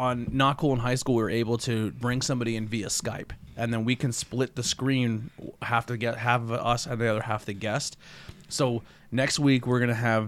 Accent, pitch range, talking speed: American, 110-125 Hz, 220 wpm